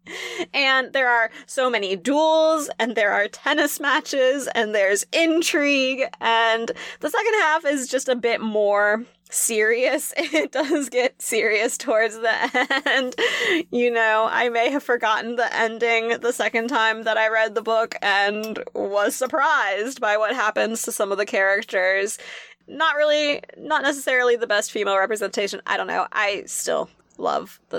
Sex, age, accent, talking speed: female, 20-39, American, 155 wpm